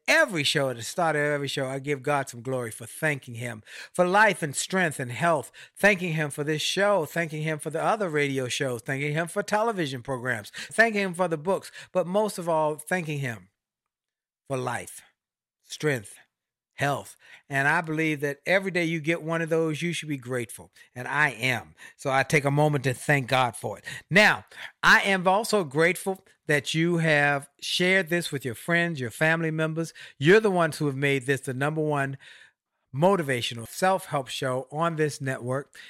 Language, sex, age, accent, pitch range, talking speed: English, male, 50-69, American, 135-170 Hz, 190 wpm